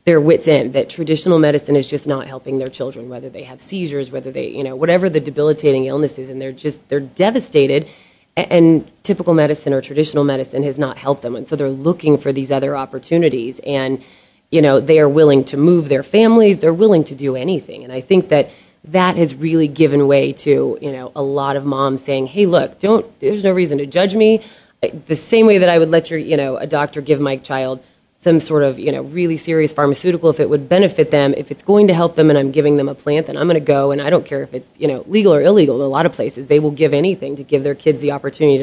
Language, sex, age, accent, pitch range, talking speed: English, female, 20-39, American, 135-160 Hz, 250 wpm